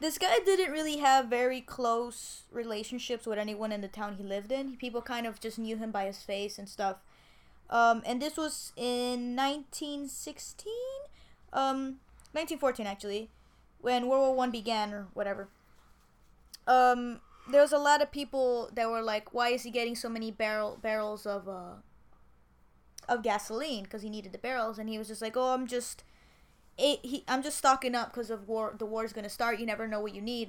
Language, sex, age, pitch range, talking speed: English, female, 20-39, 215-265 Hz, 195 wpm